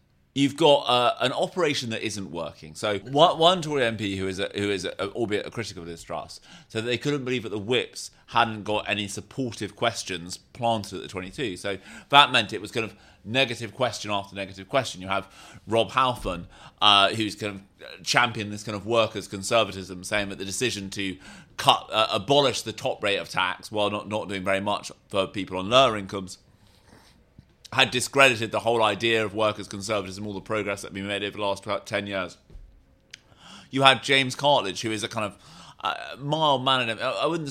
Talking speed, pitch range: 200 wpm, 100-125 Hz